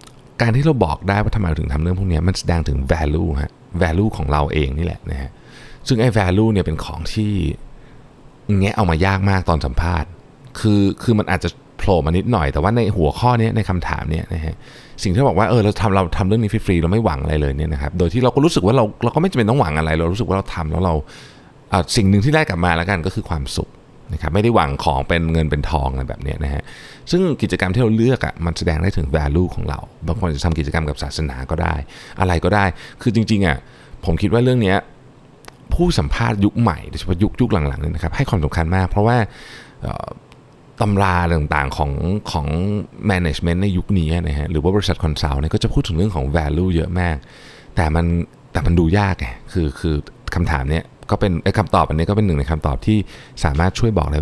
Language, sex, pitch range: Thai, male, 80-105 Hz